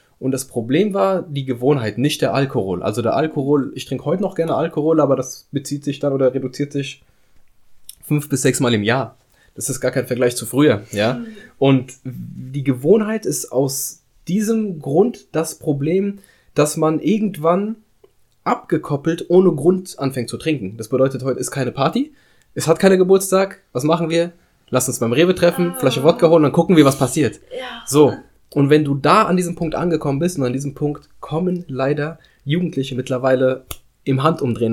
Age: 20-39